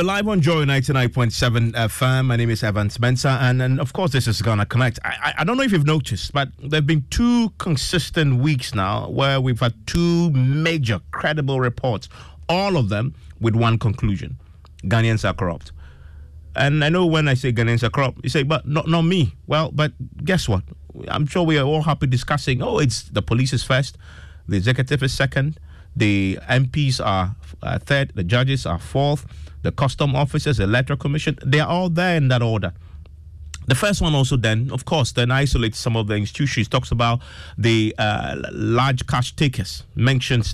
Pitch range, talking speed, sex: 105-145 Hz, 190 wpm, male